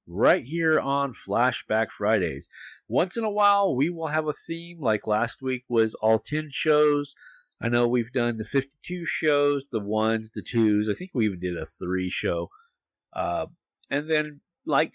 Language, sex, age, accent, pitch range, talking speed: English, male, 50-69, American, 105-160 Hz, 175 wpm